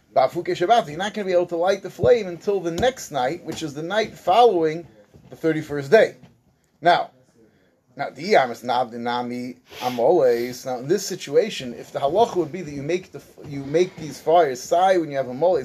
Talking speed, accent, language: 180 wpm, American, English